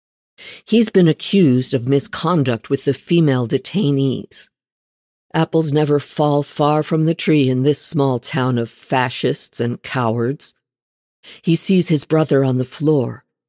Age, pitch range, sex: 50-69, 130-160 Hz, female